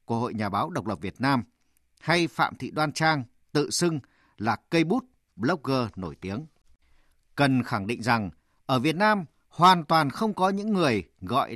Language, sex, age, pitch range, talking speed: Vietnamese, male, 50-69, 115-175 Hz, 180 wpm